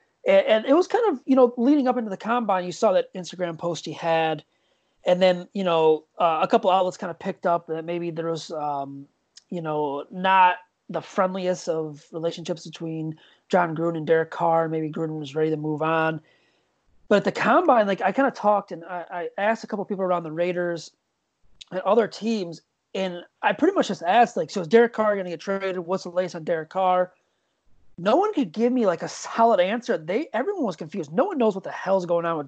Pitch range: 165-210 Hz